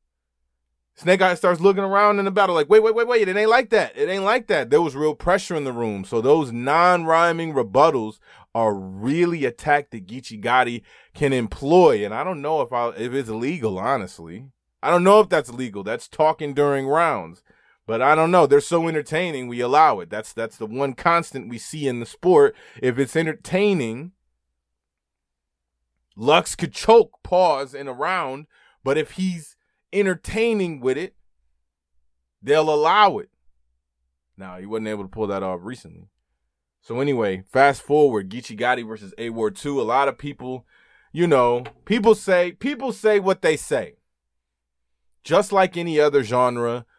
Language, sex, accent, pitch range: English, male, American, 105-170 Hz